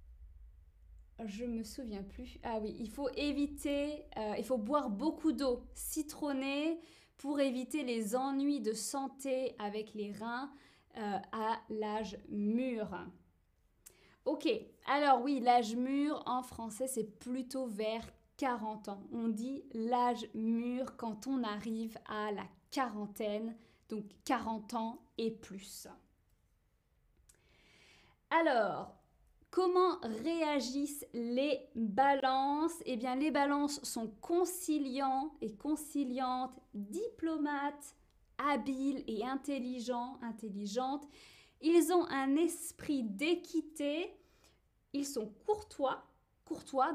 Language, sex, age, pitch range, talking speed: French, female, 20-39, 225-295 Hz, 105 wpm